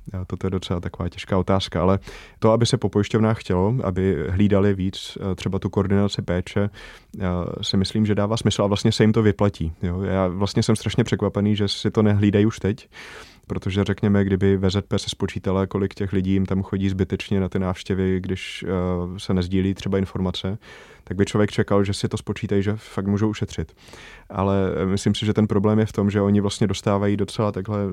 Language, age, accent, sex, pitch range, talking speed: Czech, 20-39, native, male, 95-105 Hz, 190 wpm